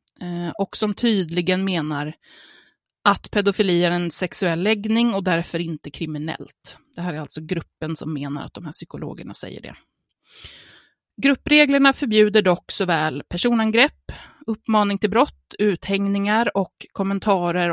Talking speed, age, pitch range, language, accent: 130 wpm, 30-49, 175-220 Hz, Swedish, native